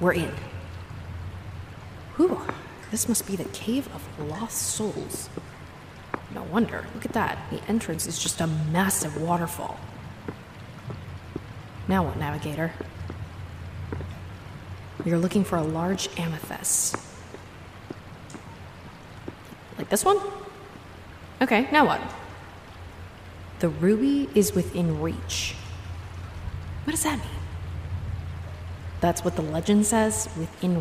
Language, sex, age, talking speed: English, female, 20-39, 105 wpm